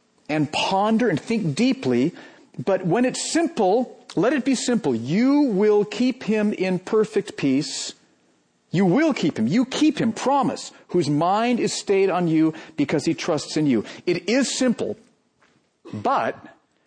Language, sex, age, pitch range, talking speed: English, male, 50-69, 160-235 Hz, 155 wpm